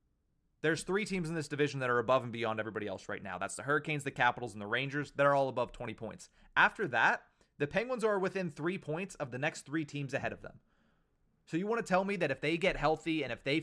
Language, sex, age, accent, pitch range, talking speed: English, male, 30-49, American, 130-165 Hz, 255 wpm